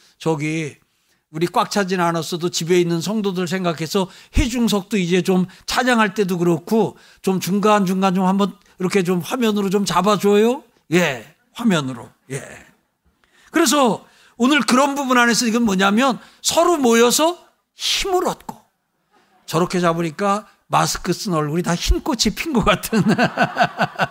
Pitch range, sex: 165-220 Hz, male